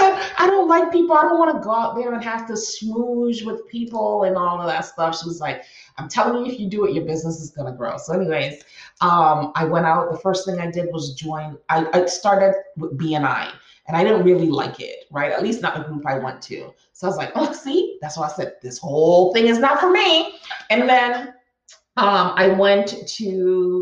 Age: 30-49